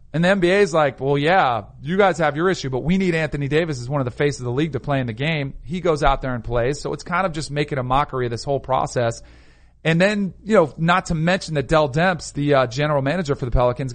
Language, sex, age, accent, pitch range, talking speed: English, male, 40-59, American, 125-165 Hz, 280 wpm